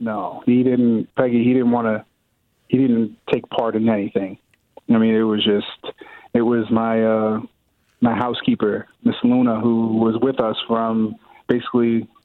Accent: American